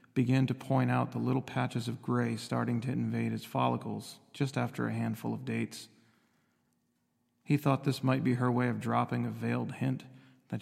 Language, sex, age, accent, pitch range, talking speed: English, male, 40-59, American, 120-130 Hz, 185 wpm